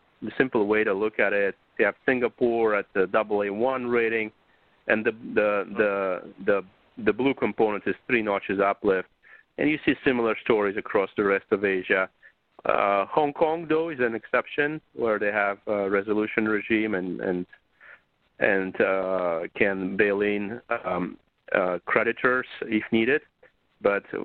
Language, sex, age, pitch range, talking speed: English, male, 40-59, 100-115 Hz, 155 wpm